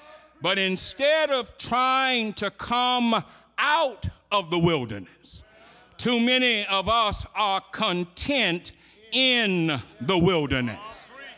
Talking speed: 100 wpm